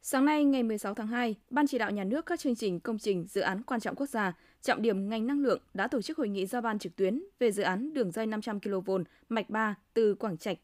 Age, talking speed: 20-39, 270 wpm